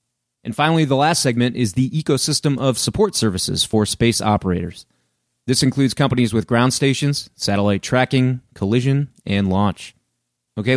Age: 30-49